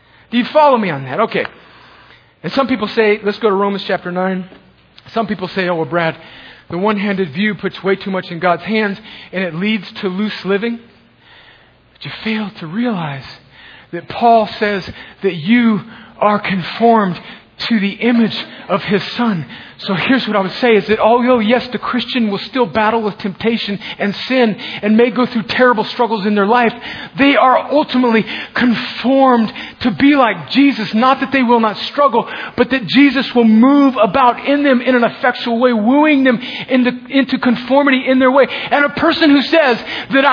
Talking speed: 185 wpm